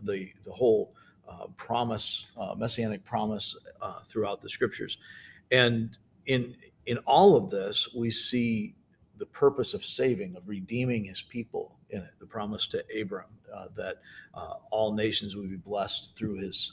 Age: 50-69